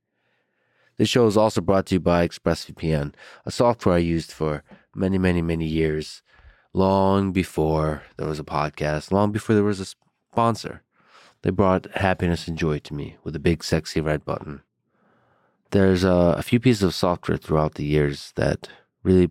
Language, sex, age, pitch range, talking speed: English, male, 30-49, 80-100 Hz, 170 wpm